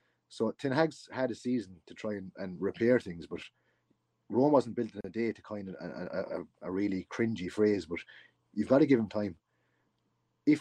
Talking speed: 200 wpm